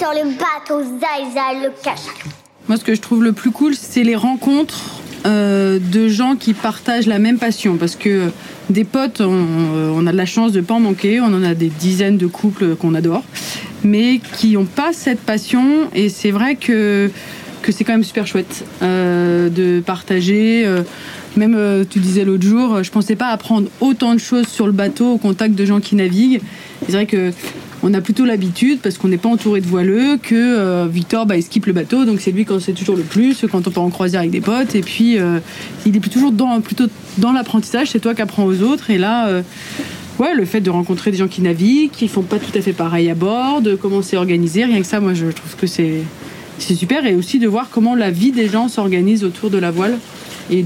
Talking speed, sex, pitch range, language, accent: 225 wpm, female, 185-235 Hz, French, French